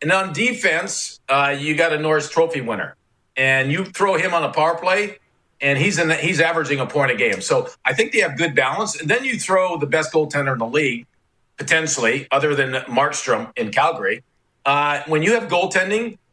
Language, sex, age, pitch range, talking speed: English, male, 50-69, 140-175 Hz, 205 wpm